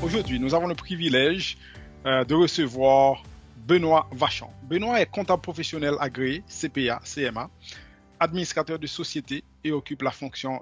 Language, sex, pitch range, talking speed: French, male, 125-160 Hz, 135 wpm